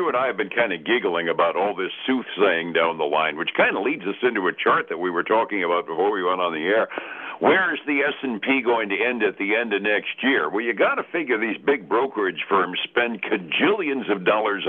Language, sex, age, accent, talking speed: English, male, 60-79, American, 245 wpm